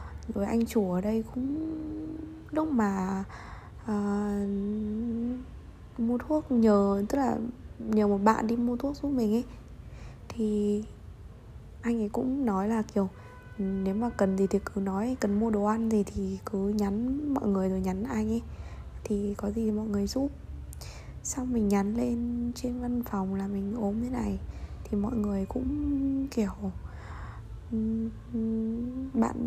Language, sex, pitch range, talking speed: Vietnamese, female, 200-235 Hz, 155 wpm